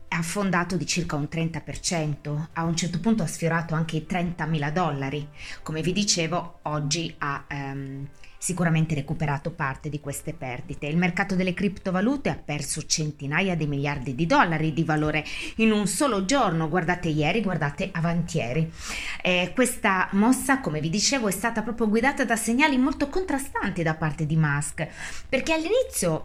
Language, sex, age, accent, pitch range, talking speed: Italian, female, 20-39, native, 155-225 Hz, 160 wpm